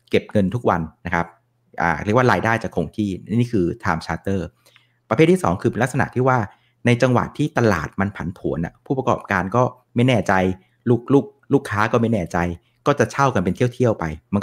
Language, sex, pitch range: Thai, male, 100-130 Hz